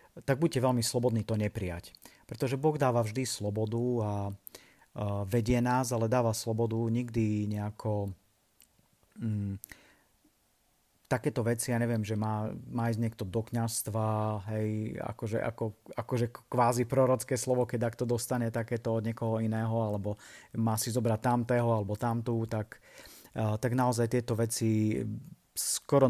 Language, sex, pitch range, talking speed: Slovak, male, 110-125 Hz, 140 wpm